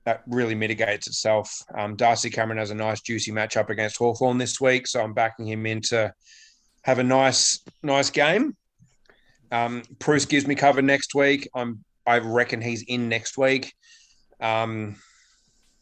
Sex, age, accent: male, 30-49, Australian